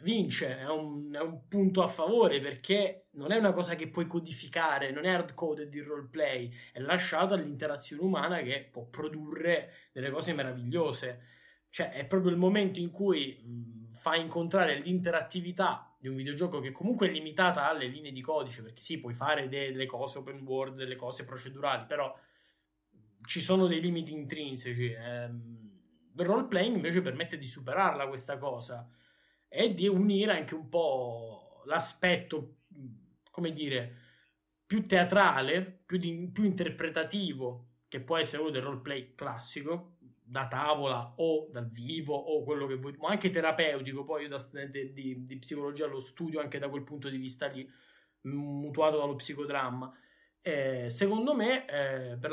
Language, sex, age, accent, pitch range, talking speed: Italian, male, 20-39, native, 130-175 Hz, 155 wpm